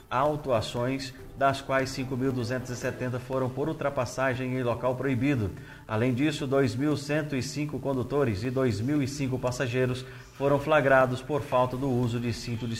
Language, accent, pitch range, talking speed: Portuguese, Brazilian, 125-145 Hz, 125 wpm